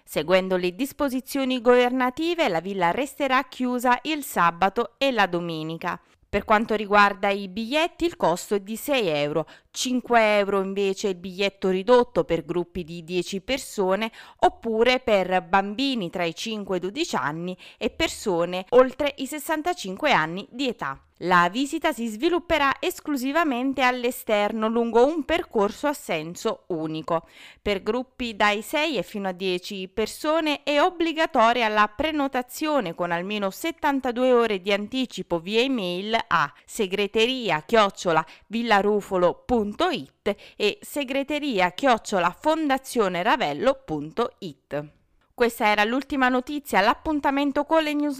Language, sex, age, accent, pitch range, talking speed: Italian, female, 20-39, native, 190-270 Hz, 120 wpm